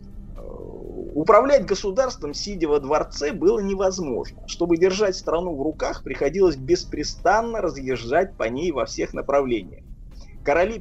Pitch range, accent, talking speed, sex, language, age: 125-210 Hz, native, 115 wpm, male, Russian, 20-39